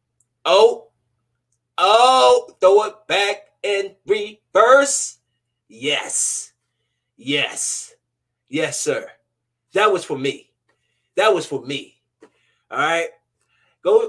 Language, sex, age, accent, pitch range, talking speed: English, male, 20-39, American, 120-175 Hz, 90 wpm